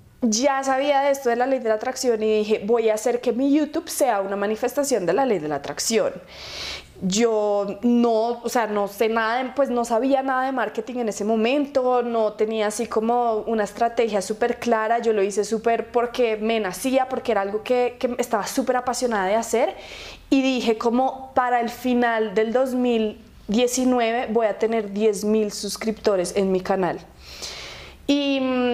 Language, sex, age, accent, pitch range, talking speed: Spanish, female, 20-39, Colombian, 215-265 Hz, 180 wpm